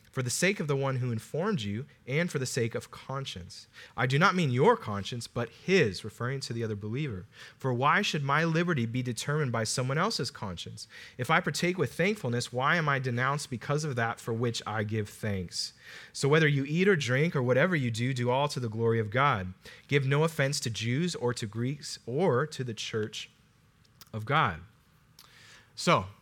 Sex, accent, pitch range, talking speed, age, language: male, American, 115-150 Hz, 200 wpm, 30-49, English